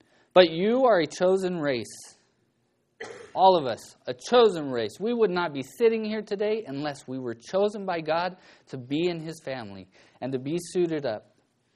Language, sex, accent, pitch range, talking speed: English, male, American, 120-185 Hz, 180 wpm